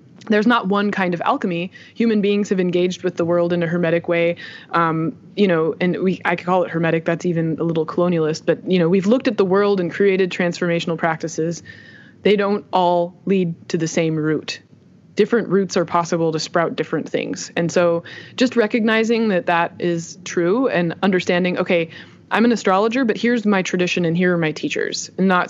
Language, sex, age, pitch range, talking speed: English, female, 20-39, 170-205 Hz, 200 wpm